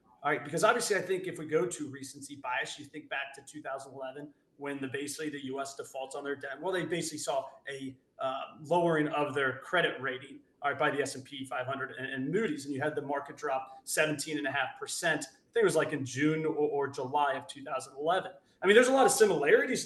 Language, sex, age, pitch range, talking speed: English, male, 30-49, 140-165 Hz, 225 wpm